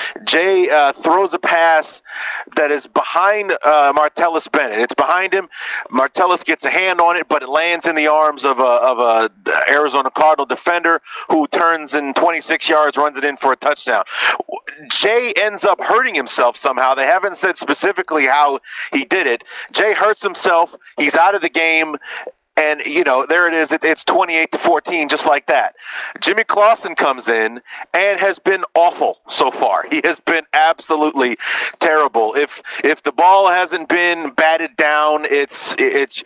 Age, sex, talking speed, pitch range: 40-59, male, 170 wpm, 150-180 Hz